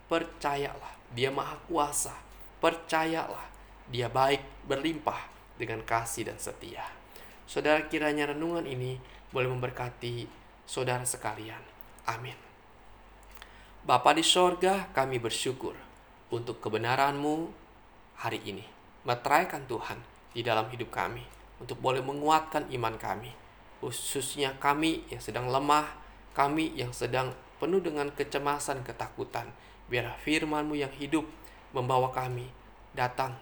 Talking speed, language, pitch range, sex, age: 110 wpm, Indonesian, 125-150 Hz, male, 20-39